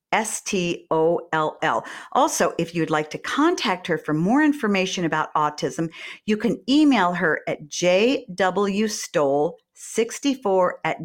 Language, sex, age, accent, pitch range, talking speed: English, female, 50-69, American, 165-230 Hz, 110 wpm